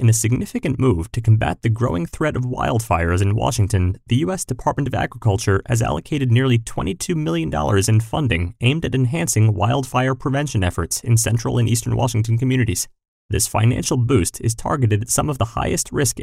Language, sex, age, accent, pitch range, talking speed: English, male, 30-49, American, 100-130 Hz, 175 wpm